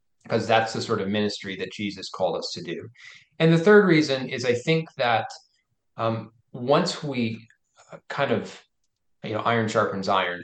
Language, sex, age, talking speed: English, male, 20-39, 170 wpm